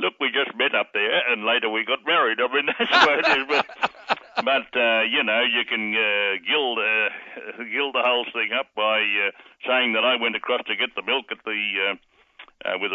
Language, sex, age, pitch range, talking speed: English, male, 60-79, 95-120 Hz, 210 wpm